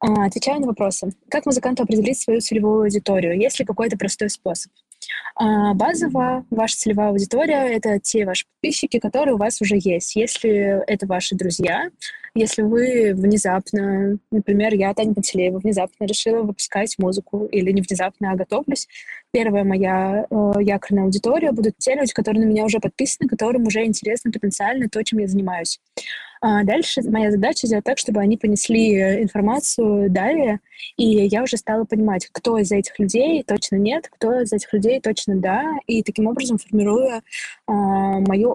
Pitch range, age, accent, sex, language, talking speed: 200-235 Hz, 20-39, native, female, Russian, 160 wpm